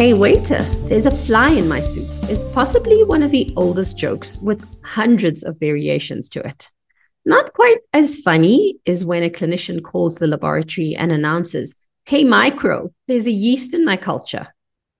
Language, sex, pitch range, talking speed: English, female, 175-255 Hz, 170 wpm